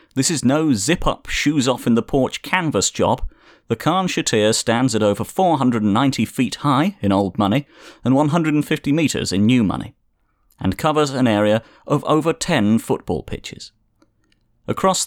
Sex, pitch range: male, 105-140 Hz